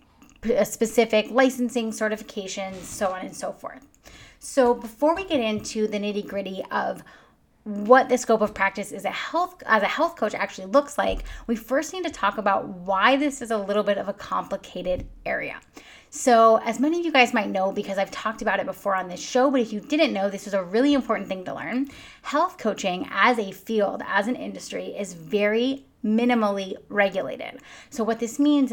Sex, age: female, 20-39